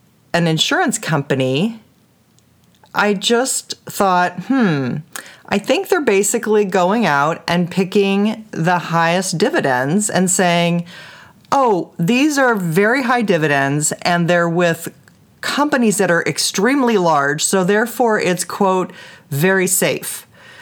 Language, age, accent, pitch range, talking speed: English, 40-59, American, 170-220 Hz, 115 wpm